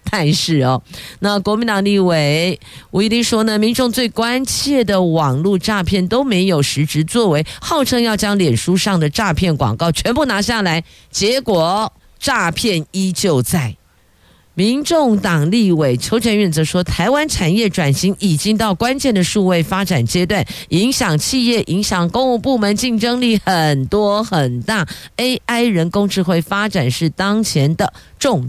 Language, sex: Chinese, female